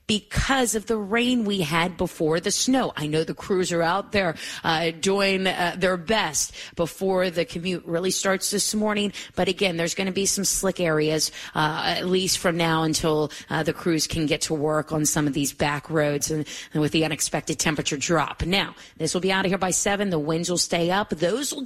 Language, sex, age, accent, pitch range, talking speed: English, female, 30-49, American, 165-225 Hz, 220 wpm